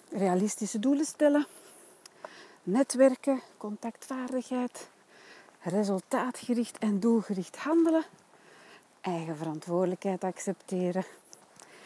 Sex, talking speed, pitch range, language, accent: female, 60 wpm, 180-245 Hz, Dutch, Dutch